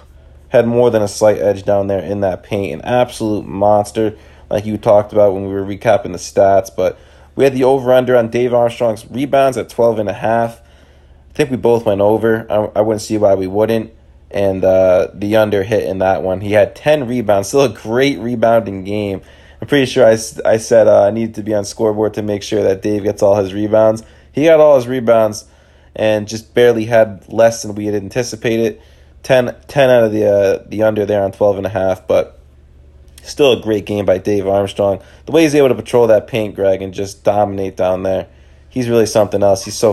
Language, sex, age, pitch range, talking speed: English, male, 20-39, 95-115 Hz, 215 wpm